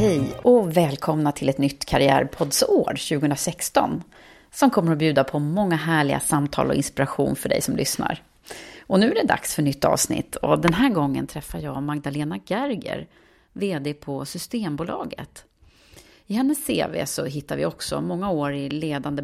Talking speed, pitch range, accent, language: 160 wpm, 145-210 Hz, native, Swedish